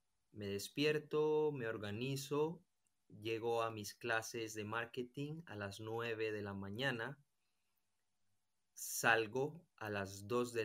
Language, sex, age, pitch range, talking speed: English, male, 30-49, 105-135 Hz, 120 wpm